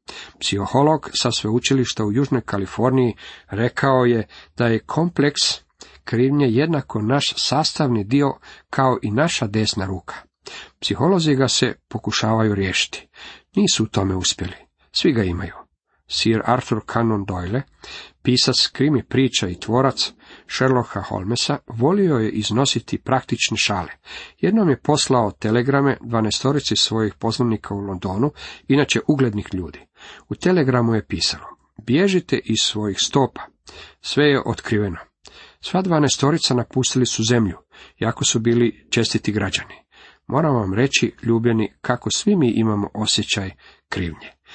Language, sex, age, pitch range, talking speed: Croatian, male, 50-69, 105-135 Hz, 125 wpm